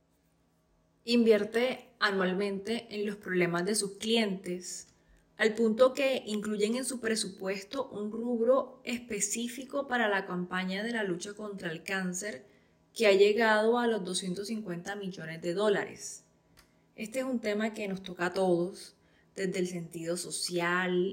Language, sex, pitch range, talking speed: Spanish, female, 180-210 Hz, 140 wpm